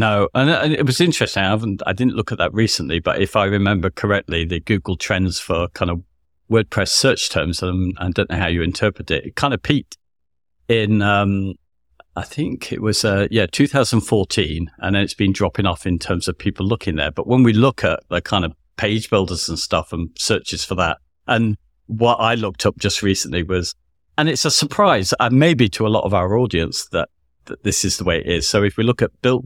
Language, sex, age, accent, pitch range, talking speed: English, male, 50-69, British, 85-110 Hz, 225 wpm